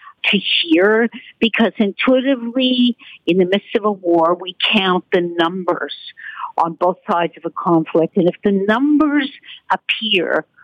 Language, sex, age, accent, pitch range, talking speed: English, female, 50-69, American, 165-230 Hz, 140 wpm